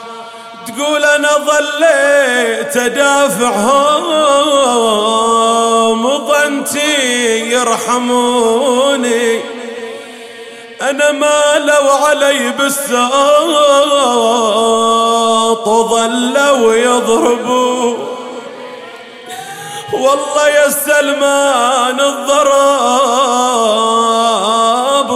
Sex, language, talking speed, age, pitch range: male, English, 40 wpm, 30-49, 230-280 Hz